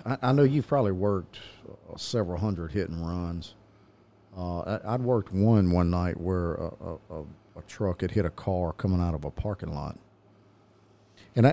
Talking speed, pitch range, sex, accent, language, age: 165 wpm, 90-110 Hz, male, American, English, 50-69